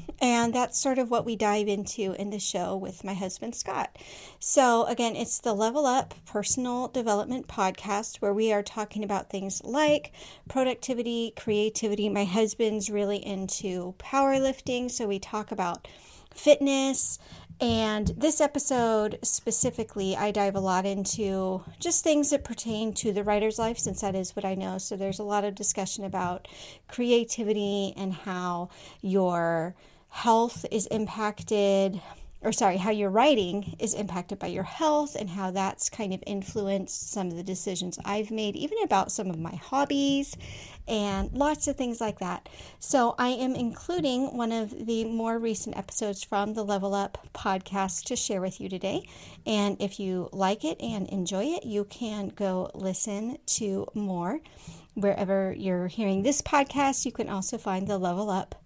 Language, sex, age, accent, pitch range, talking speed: English, female, 40-59, American, 195-235 Hz, 165 wpm